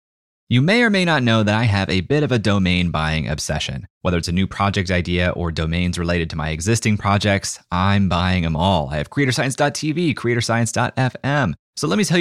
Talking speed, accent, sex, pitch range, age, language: 200 wpm, American, male, 85-115 Hz, 30-49, English